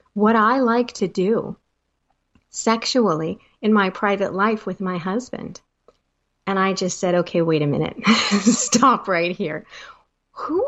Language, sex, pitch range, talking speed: English, female, 185-255 Hz, 140 wpm